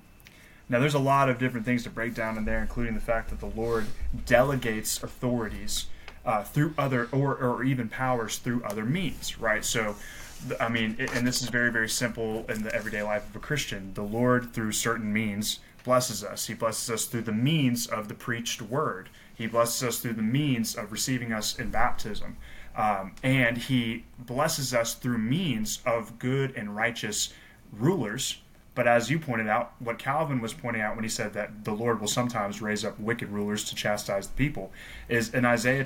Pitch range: 110-130 Hz